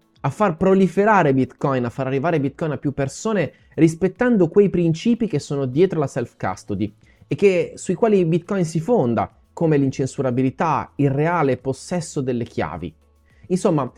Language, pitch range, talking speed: Italian, 130-185 Hz, 145 wpm